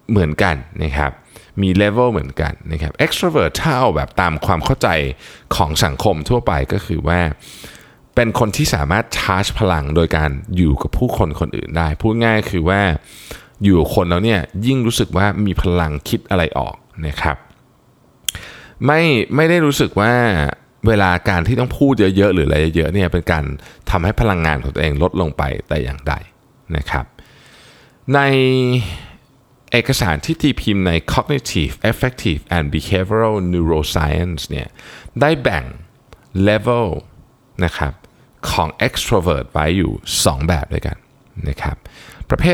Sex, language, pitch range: male, Thai, 80-120 Hz